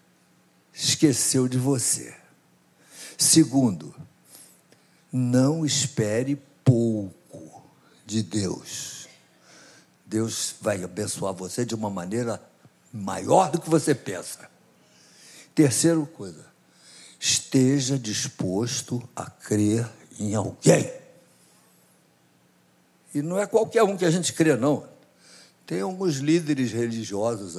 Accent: Brazilian